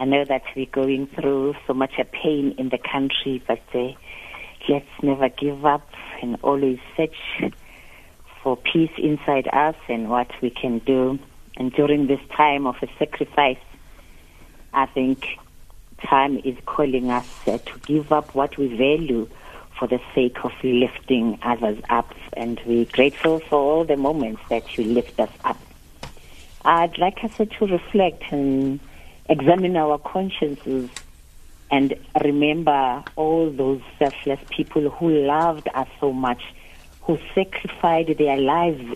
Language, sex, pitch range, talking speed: English, female, 125-150 Hz, 145 wpm